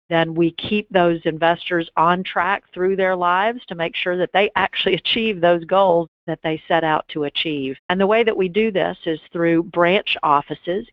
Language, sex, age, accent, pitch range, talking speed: English, female, 50-69, American, 155-180 Hz, 200 wpm